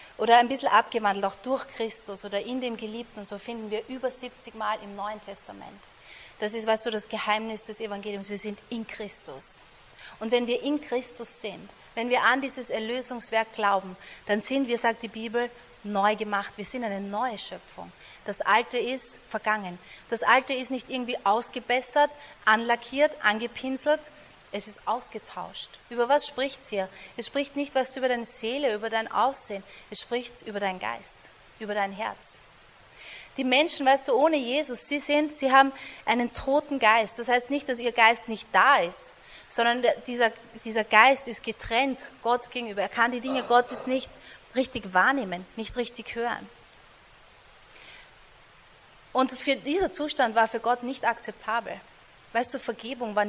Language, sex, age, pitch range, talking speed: German, female, 30-49, 215-260 Hz, 165 wpm